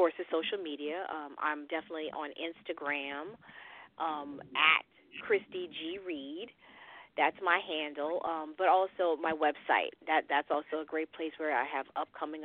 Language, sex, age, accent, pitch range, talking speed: English, female, 40-59, American, 155-185 Hz, 155 wpm